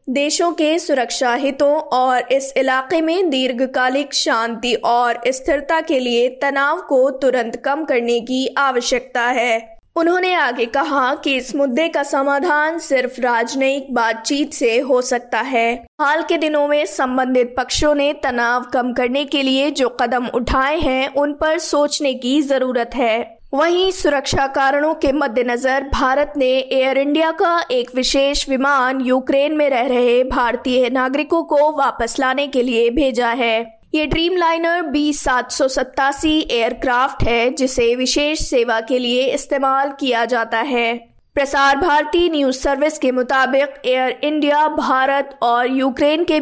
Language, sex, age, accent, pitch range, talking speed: Hindi, female, 20-39, native, 250-295 Hz, 145 wpm